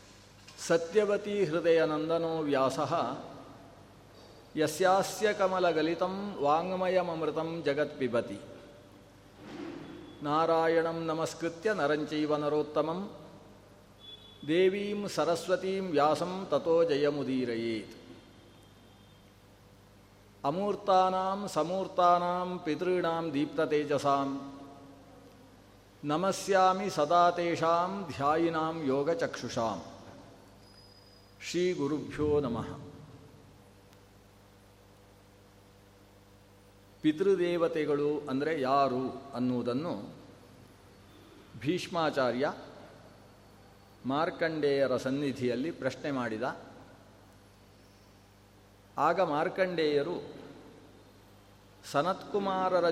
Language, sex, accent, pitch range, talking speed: Kannada, male, native, 100-165 Hz, 35 wpm